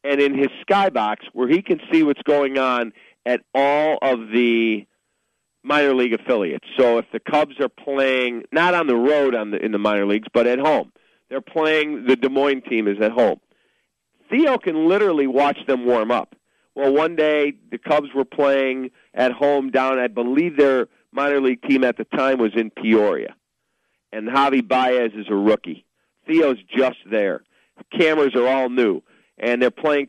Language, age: English, 50-69